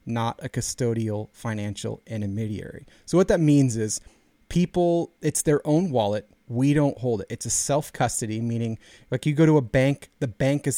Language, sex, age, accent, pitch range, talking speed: English, male, 30-49, American, 115-140 Hz, 185 wpm